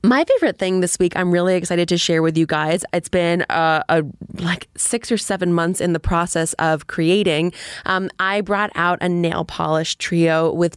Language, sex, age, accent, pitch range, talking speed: English, female, 20-39, American, 155-195 Hz, 200 wpm